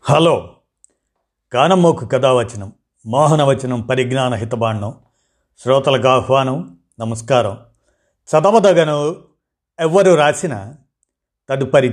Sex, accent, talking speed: male, native, 65 wpm